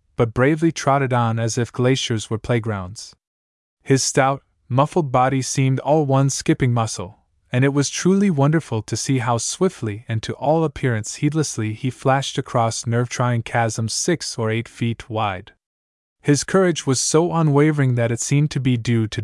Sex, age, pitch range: male, 20-39, 110-135 Hz